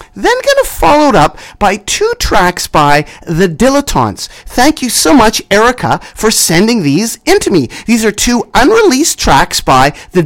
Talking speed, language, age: 170 wpm, English, 30-49